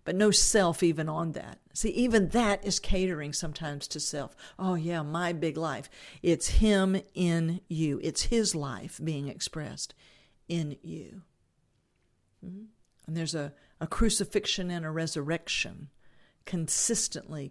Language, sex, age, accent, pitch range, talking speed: English, female, 50-69, American, 150-190 Hz, 135 wpm